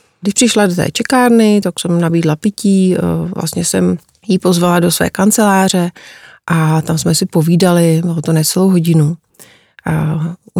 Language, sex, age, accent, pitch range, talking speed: Czech, female, 30-49, native, 165-185 Hz, 155 wpm